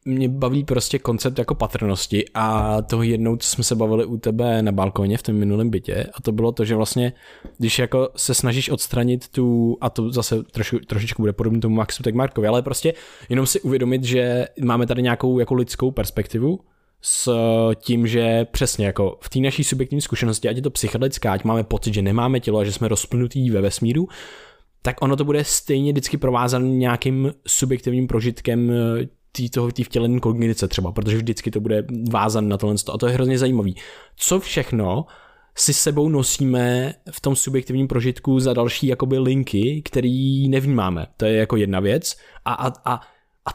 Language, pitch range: Czech, 115-135 Hz